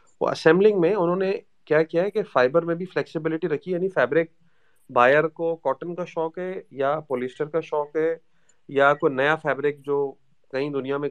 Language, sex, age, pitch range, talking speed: Urdu, male, 30-49, 135-175 Hz, 175 wpm